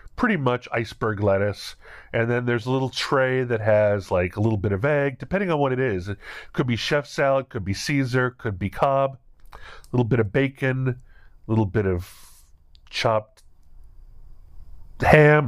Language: English